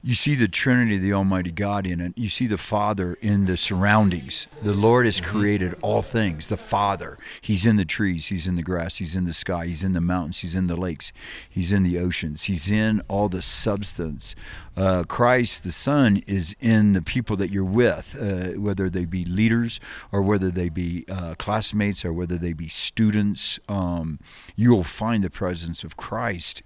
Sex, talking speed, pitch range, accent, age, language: male, 200 wpm, 85-105 Hz, American, 50-69, English